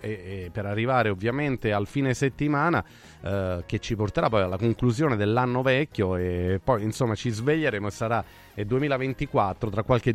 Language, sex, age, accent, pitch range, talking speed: Italian, male, 30-49, native, 110-155 Hz, 160 wpm